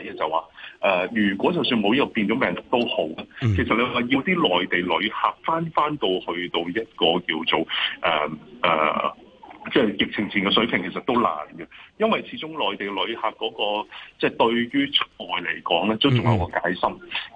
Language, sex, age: Chinese, male, 30-49